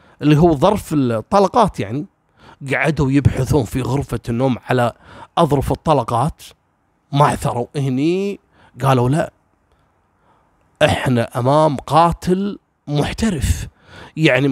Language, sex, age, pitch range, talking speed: Arabic, male, 30-49, 135-195 Hz, 95 wpm